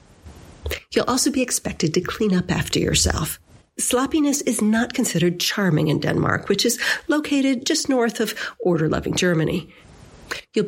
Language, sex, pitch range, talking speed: Danish, female, 160-225 Hz, 140 wpm